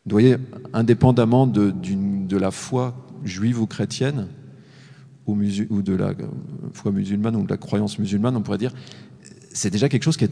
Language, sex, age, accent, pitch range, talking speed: French, male, 40-59, French, 105-140 Hz, 185 wpm